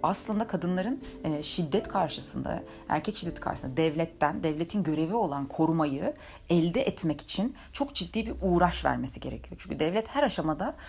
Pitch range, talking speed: 160-215 Hz, 140 wpm